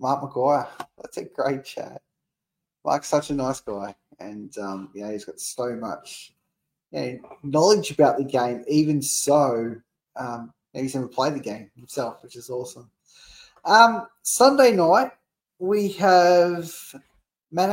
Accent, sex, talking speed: Australian, male, 140 wpm